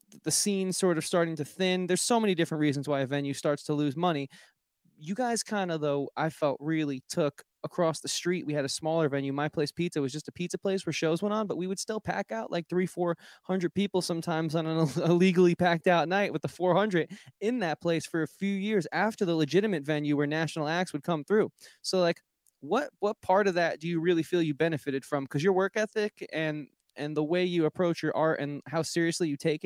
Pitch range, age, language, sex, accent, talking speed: 150-180 Hz, 20-39, English, male, American, 235 wpm